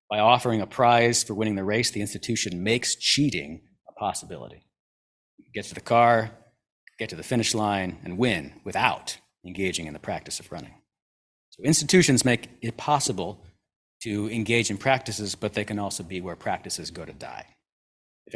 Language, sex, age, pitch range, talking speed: English, male, 40-59, 95-120 Hz, 170 wpm